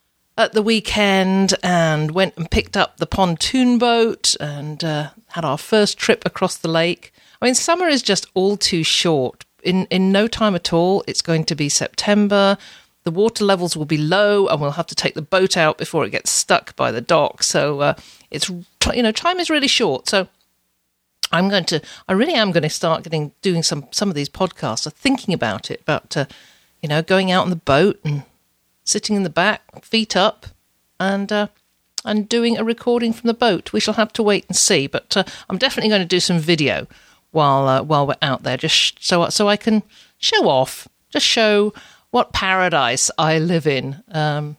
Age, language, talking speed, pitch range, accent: 50-69, English, 205 wpm, 155-210 Hz, British